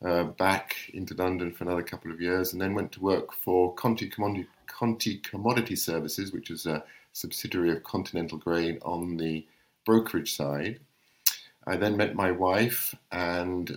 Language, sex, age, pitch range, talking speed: English, male, 50-69, 80-95 Hz, 155 wpm